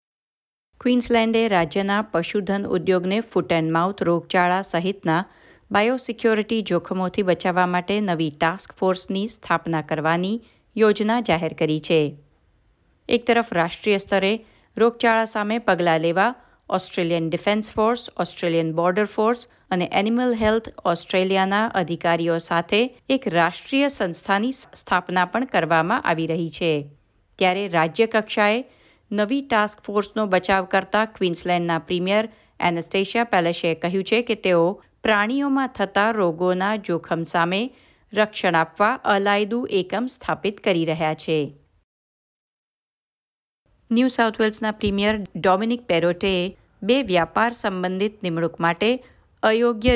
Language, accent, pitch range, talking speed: Gujarati, native, 170-220 Hz, 100 wpm